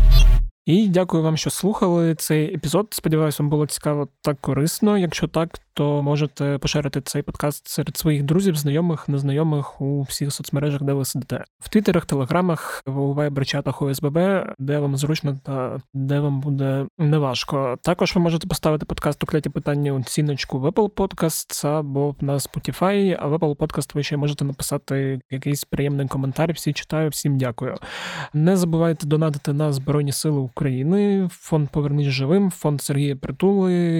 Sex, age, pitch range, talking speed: male, 20-39, 140-160 Hz, 155 wpm